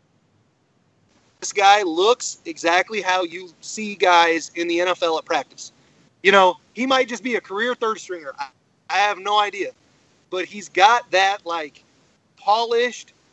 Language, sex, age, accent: English, male, 30-49, American